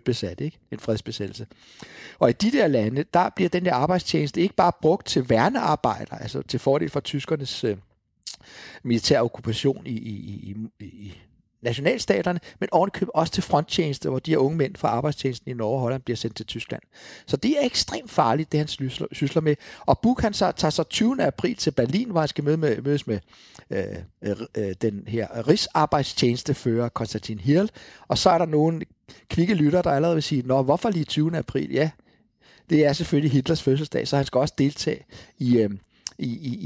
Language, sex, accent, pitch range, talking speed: English, male, Danish, 115-160 Hz, 180 wpm